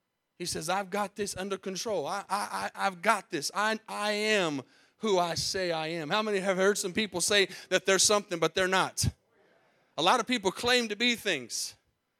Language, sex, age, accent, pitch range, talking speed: English, male, 30-49, American, 160-210 Hz, 200 wpm